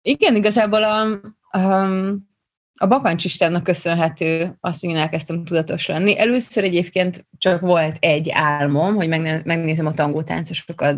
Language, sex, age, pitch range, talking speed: Hungarian, female, 20-39, 155-180 Hz, 120 wpm